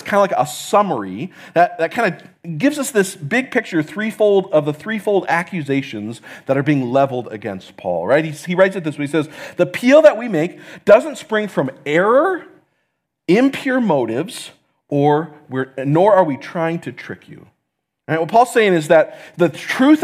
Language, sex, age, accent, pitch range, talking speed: English, male, 40-59, American, 155-210 Hz, 185 wpm